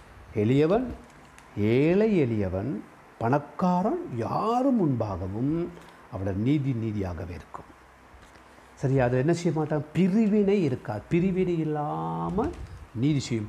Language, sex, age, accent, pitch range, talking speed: Tamil, male, 60-79, native, 95-155 Hz, 95 wpm